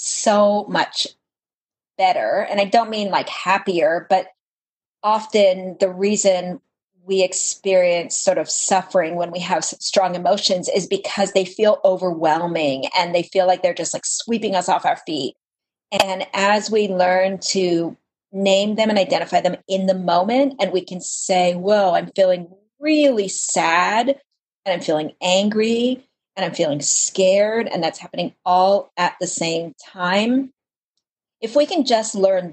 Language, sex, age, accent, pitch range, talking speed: English, female, 40-59, American, 180-210 Hz, 155 wpm